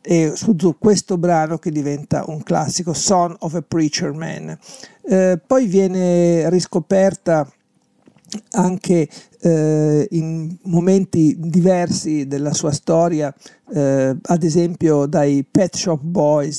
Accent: native